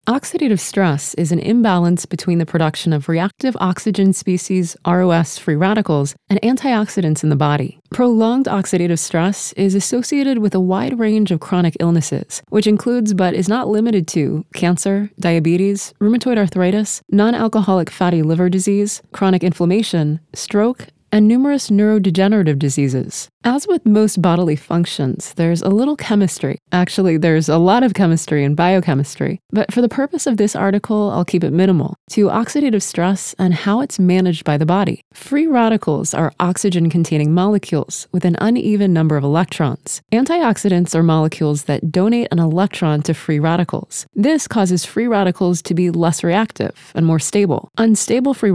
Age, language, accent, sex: 20-39, English, American, female